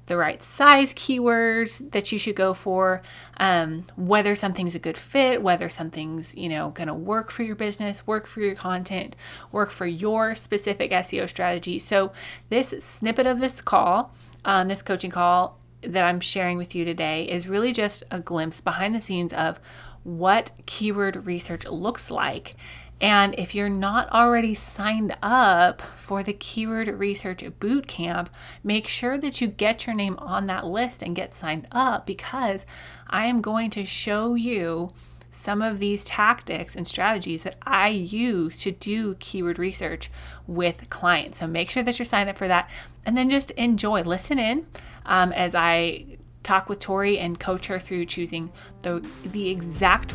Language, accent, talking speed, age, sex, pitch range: English, American, 170 wpm, 20-39, female, 175-215 Hz